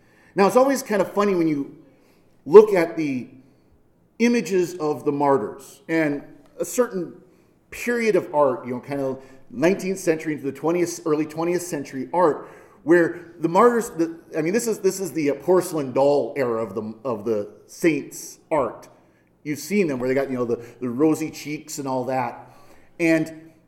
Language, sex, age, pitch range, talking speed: English, male, 40-59, 145-195 Hz, 175 wpm